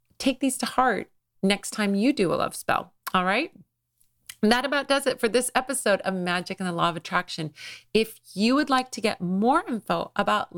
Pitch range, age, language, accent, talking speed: 175-235 Hz, 40-59, English, American, 210 wpm